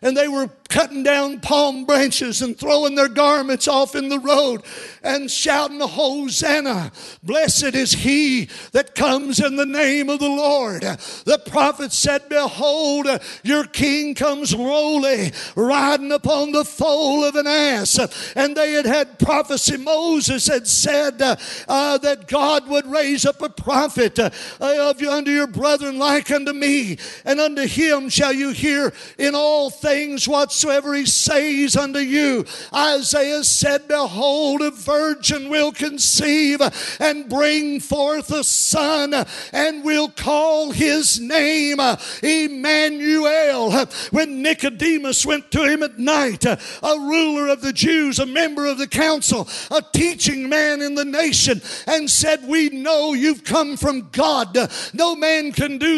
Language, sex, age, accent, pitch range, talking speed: English, male, 50-69, American, 275-300 Hz, 145 wpm